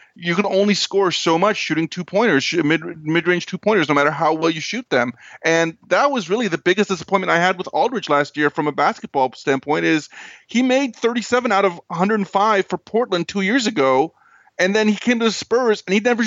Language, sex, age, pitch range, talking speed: English, male, 30-49, 150-200 Hz, 235 wpm